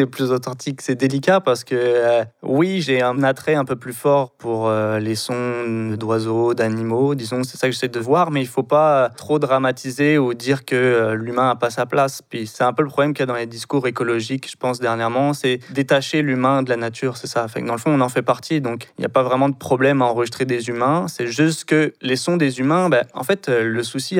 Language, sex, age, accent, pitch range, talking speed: French, male, 20-39, French, 120-140 Hz, 250 wpm